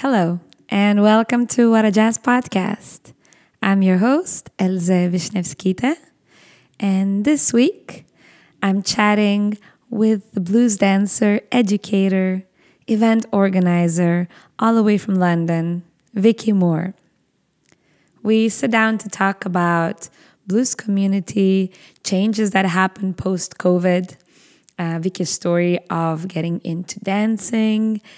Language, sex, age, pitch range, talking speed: English, female, 20-39, 175-210 Hz, 105 wpm